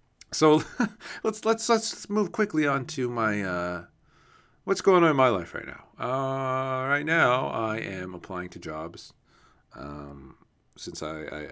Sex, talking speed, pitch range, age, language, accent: male, 155 wpm, 85-135 Hz, 40-59, English, American